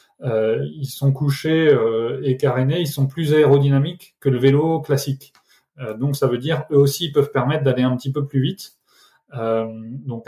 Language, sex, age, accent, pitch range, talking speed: French, male, 20-39, French, 120-140 Hz, 195 wpm